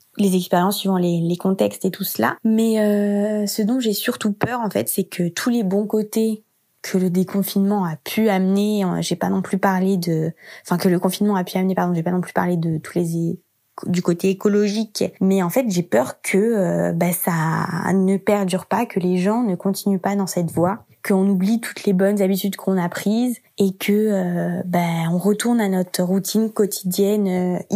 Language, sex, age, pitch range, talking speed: French, female, 20-39, 180-210 Hz, 210 wpm